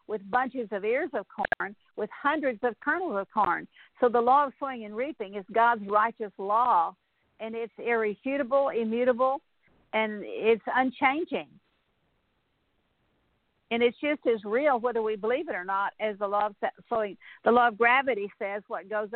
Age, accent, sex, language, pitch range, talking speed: 50-69, American, female, English, 205-250 Hz, 165 wpm